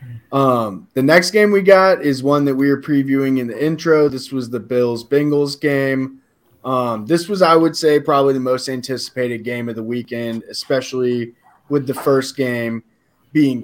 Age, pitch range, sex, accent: 20-39, 120-145 Hz, male, American